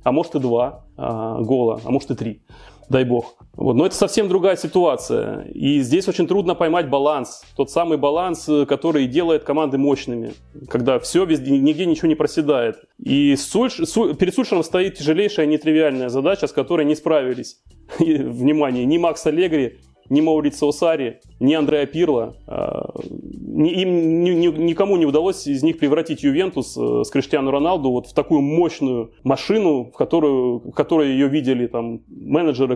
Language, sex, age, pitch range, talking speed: Russian, male, 30-49, 130-170 Hz, 140 wpm